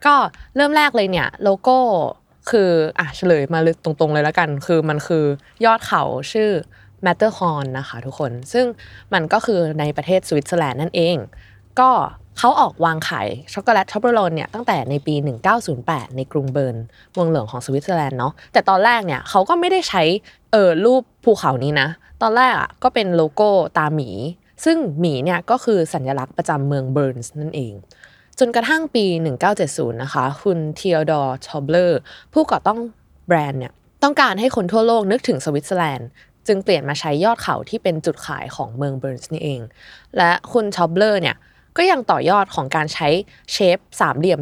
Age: 20-39